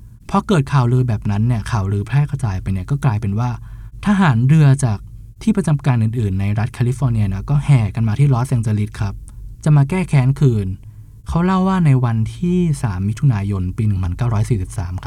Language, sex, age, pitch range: Thai, male, 20-39, 110-140 Hz